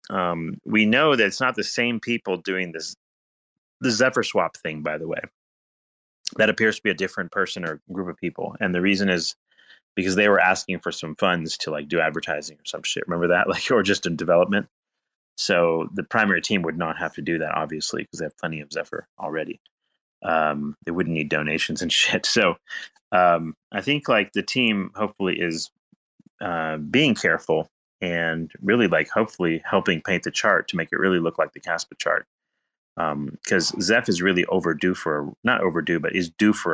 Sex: male